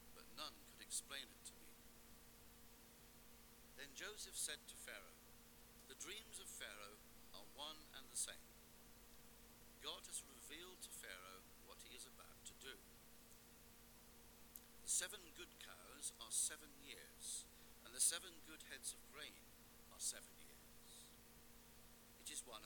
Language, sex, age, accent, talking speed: English, male, 60-79, British, 130 wpm